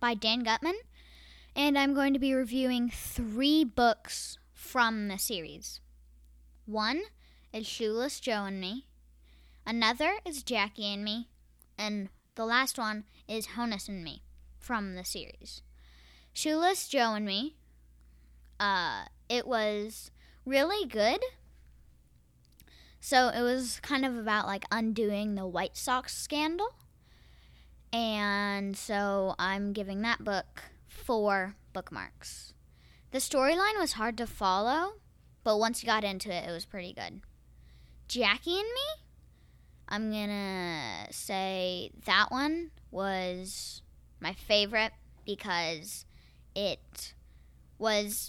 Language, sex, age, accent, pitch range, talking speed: English, female, 10-29, American, 180-240 Hz, 120 wpm